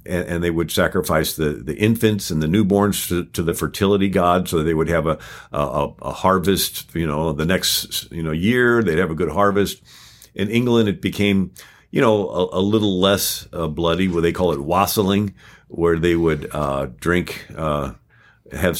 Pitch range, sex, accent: 80-100 Hz, male, American